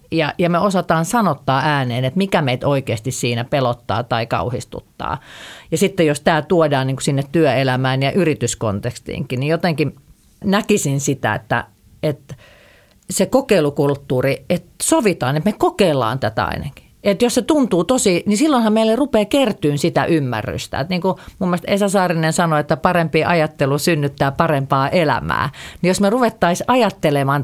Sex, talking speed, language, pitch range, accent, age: female, 140 wpm, Finnish, 130-180 Hz, native, 40-59